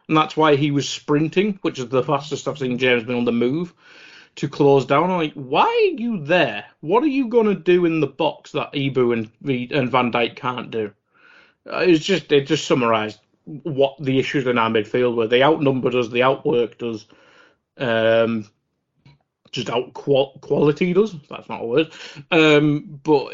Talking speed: 190 wpm